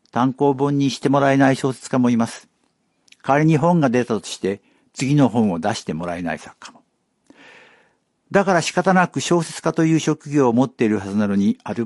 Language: Japanese